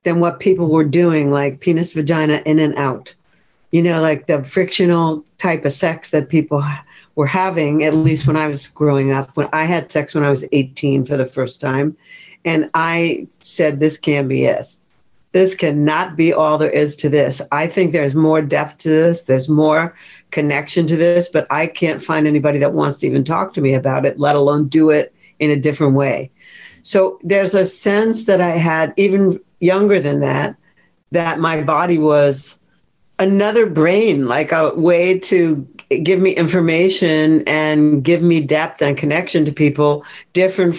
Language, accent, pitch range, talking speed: English, American, 150-175 Hz, 180 wpm